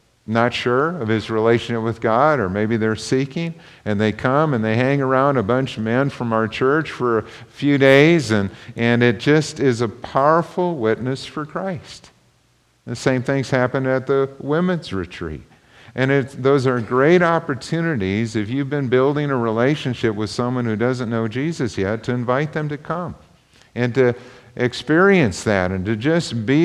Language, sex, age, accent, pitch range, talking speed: English, male, 50-69, American, 105-140 Hz, 180 wpm